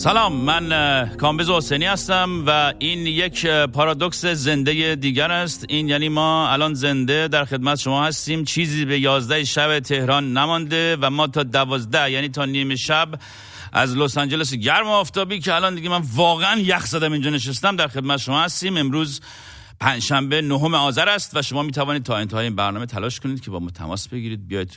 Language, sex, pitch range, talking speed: Persian, male, 100-155 Hz, 185 wpm